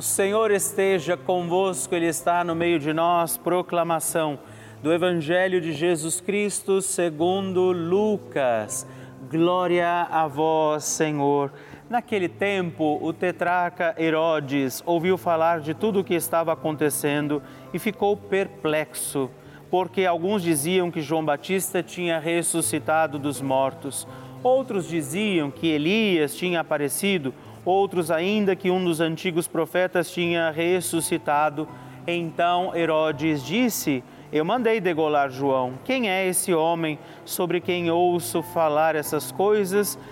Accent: Brazilian